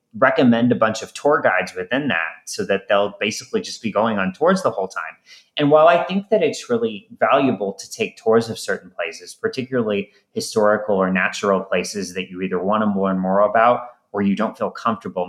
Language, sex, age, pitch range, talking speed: English, male, 30-49, 115-185 Hz, 205 wpm